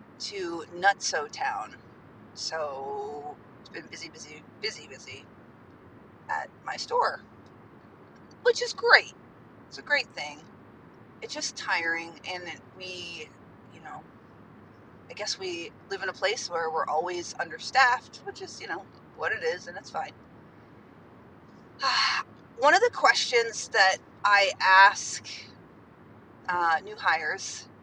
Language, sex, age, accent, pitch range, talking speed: English, female, 30-49, American, 175-235 Hz, 125 wpm